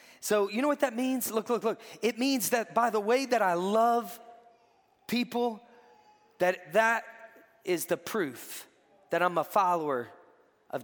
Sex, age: male, 20-39